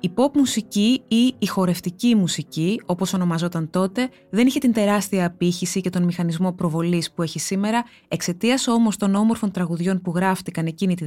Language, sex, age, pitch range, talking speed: Greek, female, 20-39, 175-225 Hz, 170 wpm